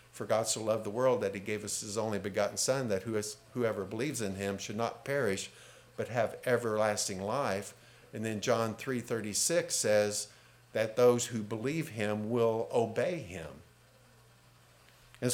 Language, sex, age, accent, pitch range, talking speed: English, male, 50-69, American, 105-130 Hz, 155 wpm